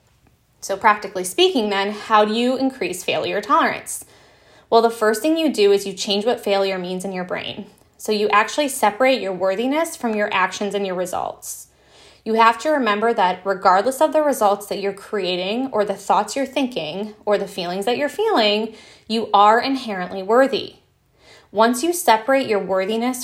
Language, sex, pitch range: English, female, 195-235 Hz